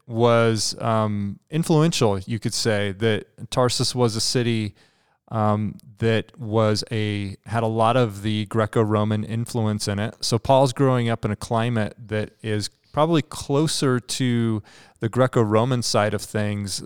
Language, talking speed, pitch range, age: English, 145 wpm, 105-120 Hz, 30-49